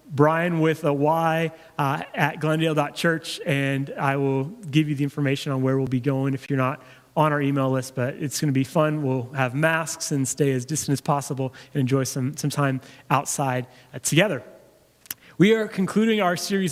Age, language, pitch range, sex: 30-49, English, 140-170 Hz, male